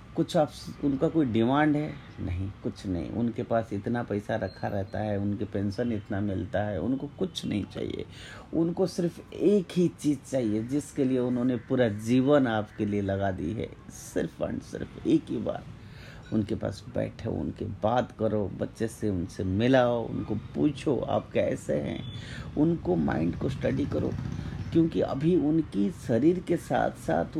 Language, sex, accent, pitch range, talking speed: Hindi, male, native, 105-145 Hz, 160 wpm